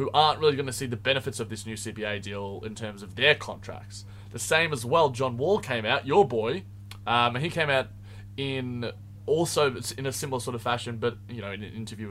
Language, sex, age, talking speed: English, male, 20-39, 235 wpm